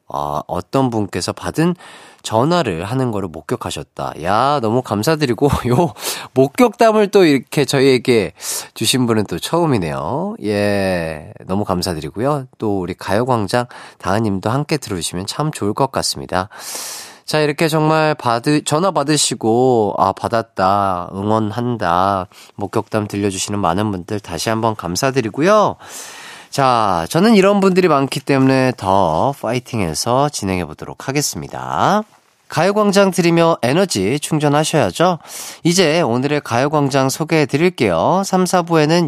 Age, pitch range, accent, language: 30-49, 110-165 Hz, native, Korean